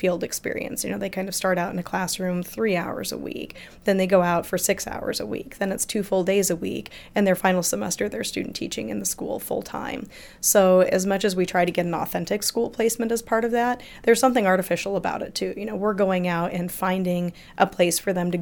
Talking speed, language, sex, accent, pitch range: 255 wpm, English, female, American, 180-200 Hz